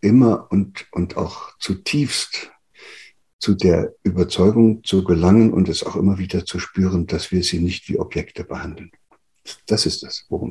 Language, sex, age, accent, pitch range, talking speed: German, male, 60-79, German, 85-100 Hz, 160 wpm